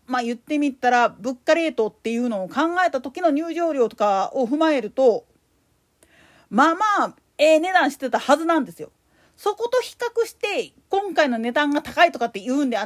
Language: Japanese